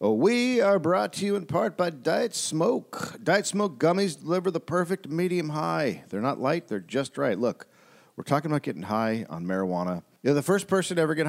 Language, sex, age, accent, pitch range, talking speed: English, male, 50-69, American, 130-165 Hz, 200 wpm